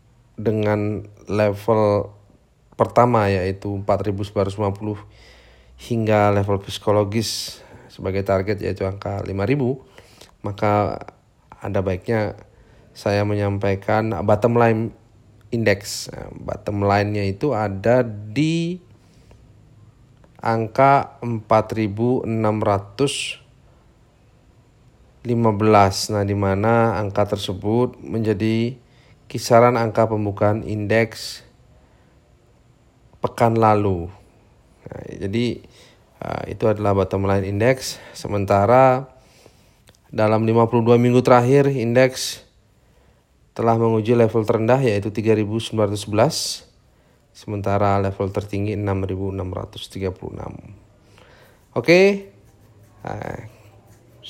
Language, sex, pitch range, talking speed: Indonesian, male, 100-120 Hz, 75 wpm